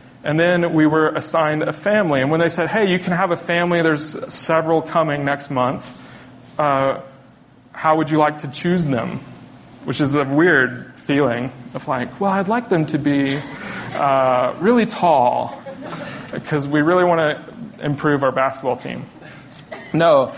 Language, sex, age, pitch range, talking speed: English, male, 30-49, 135-170 Hz, 165 wpm